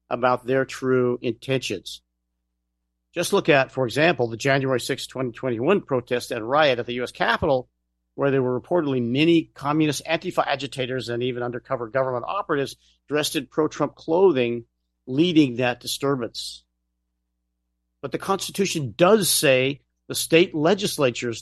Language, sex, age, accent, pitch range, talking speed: English, male, 50-69, American, 110-155 Hz, 130 wpm